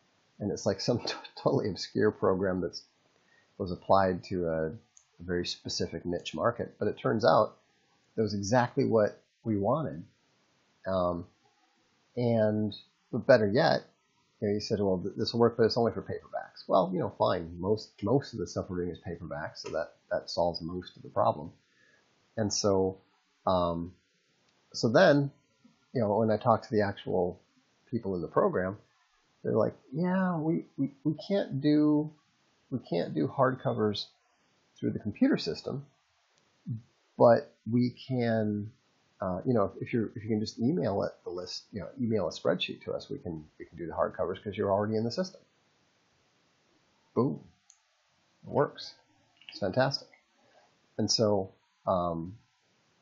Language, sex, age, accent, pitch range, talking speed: English, male, 30-49, American, 90-120 Hz, 160 wpm